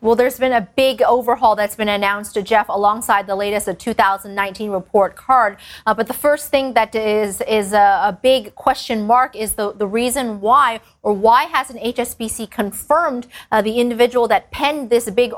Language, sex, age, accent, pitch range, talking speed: English, female, 30-49, American, 210-255 Hz, 180 wpm